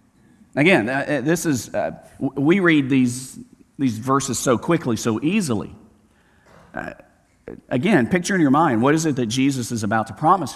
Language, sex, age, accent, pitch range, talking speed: English, male, 50-69, American, 115-160 Hz, 160 wpm